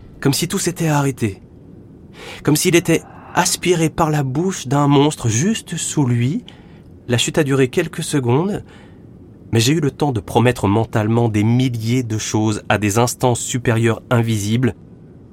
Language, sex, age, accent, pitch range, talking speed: French, male, 30-49, French, 95-125 Hz, 155 wpm